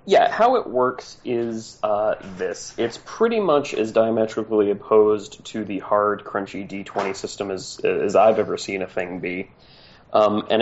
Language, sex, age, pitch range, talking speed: English, male, 20-39, 105-115 Hz, 165 wpm